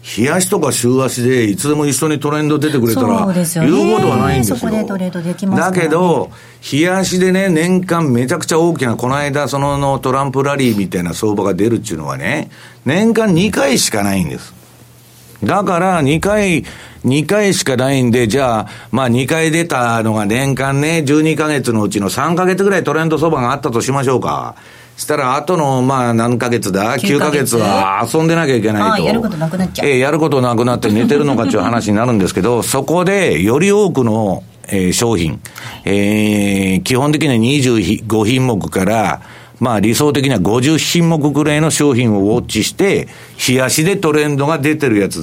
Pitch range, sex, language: 120-165 Hz, male, Japanese